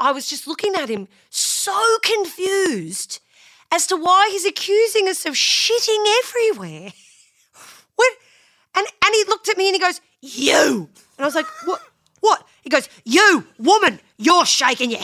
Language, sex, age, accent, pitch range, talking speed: English, female, 40-59, Australian, 240-390 Hz, 165 wpm